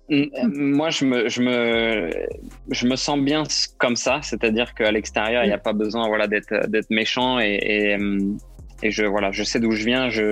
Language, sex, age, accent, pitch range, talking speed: French, male, 20-39, French, 105-120 Hz, 200 wpm